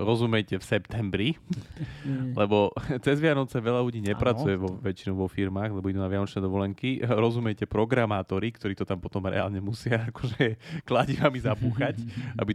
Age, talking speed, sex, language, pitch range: 30-49, 145 wpm, male, Slovak, 90-110 Hz